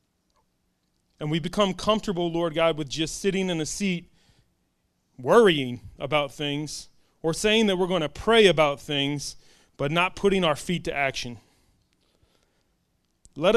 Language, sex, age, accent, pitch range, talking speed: English, male, 30-49, American, 165-205 Hz, 140 wpm